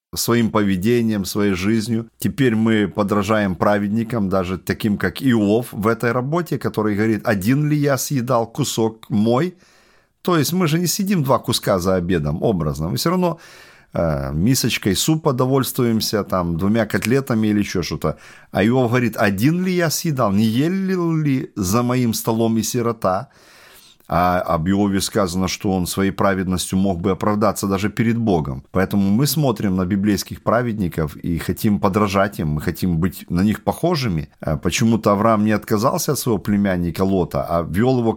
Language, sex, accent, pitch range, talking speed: Russian, male, native, 95-120 Hz, 160 wpm